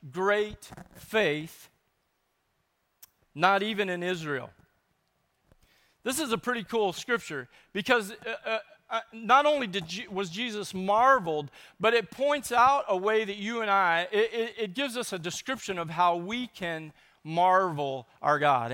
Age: 40-59